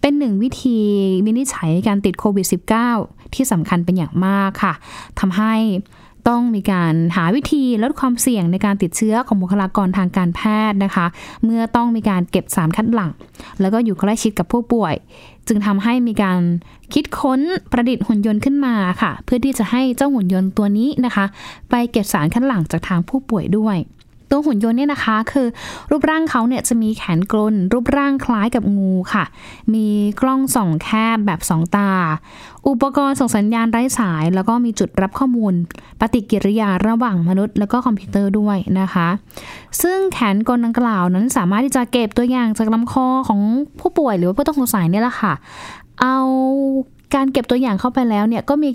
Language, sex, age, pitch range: Thai, female, 10-29, 195-255 Hz